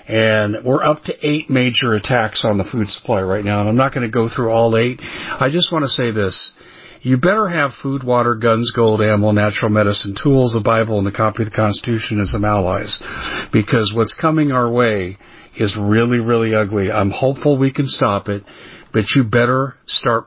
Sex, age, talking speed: male, 50-69, 205 wpm